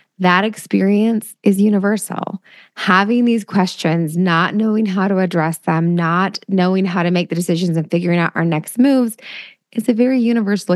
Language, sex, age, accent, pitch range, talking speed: English, female, 20-39, American, 170-205 Hz, 165 wpm